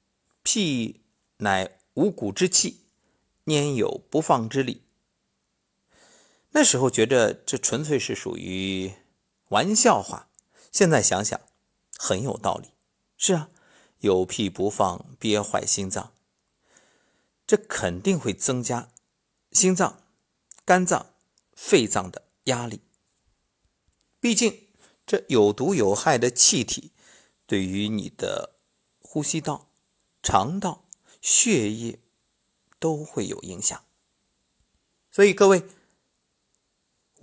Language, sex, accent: Chinese, male, native